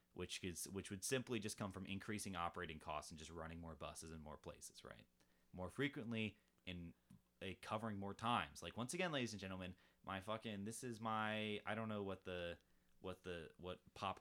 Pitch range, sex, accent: 90-125 Hz, male, American